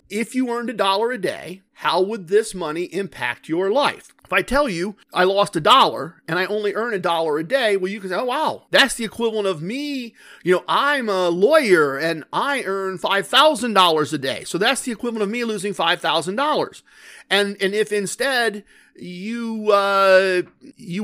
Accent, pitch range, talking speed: American, 190-240 Hz, 190 wpm